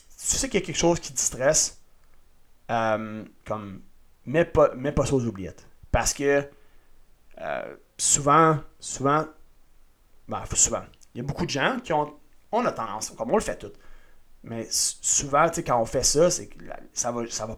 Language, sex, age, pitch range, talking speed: French, male, 30-49, 115-170 Hz, 190 wpm